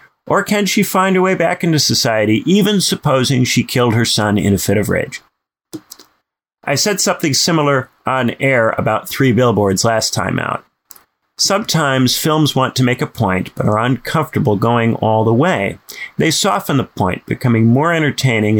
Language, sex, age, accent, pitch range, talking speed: English, male, 40-59, American, 115-170 Hz, 170 wpm